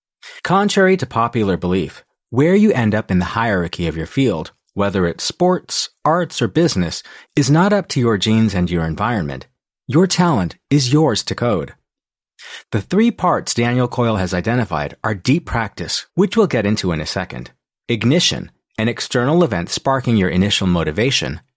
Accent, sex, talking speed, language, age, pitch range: American, male, 165 wpm, English, 30-49, 95-155 Hz